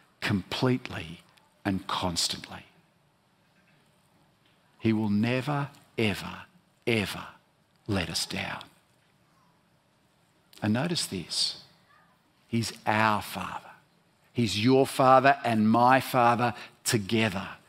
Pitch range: 115-155 Hz